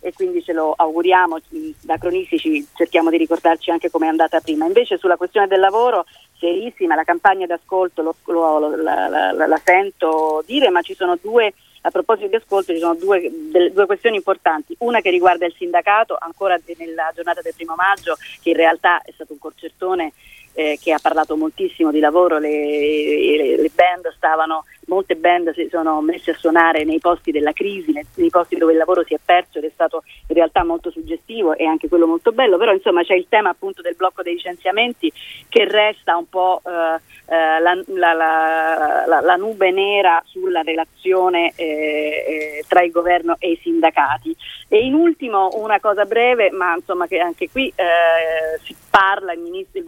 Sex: female